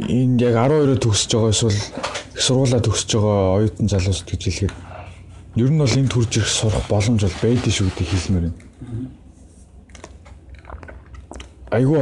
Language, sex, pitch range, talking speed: English, male, 95-115 Hz, 150 wpm